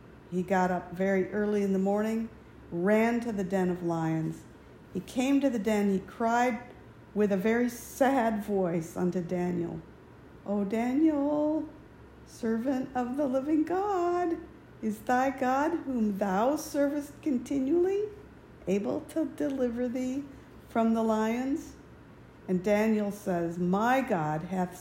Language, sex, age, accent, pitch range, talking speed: English, female, 50-69, American, 185-260 Hz, 135 wpm